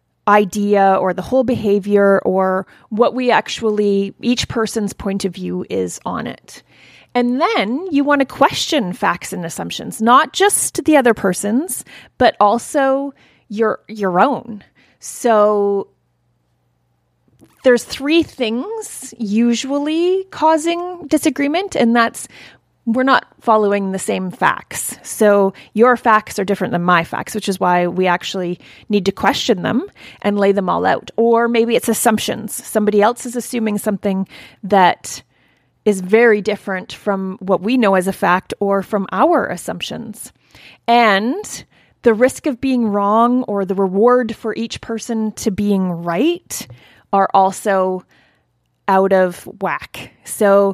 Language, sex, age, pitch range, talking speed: English, female, 30-49, 195-245 Hz, 140 wpm